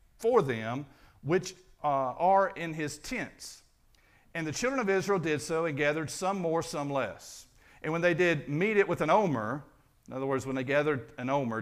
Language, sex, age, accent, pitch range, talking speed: English, male, 50-69, American, 135-180 Hz, 195 wpm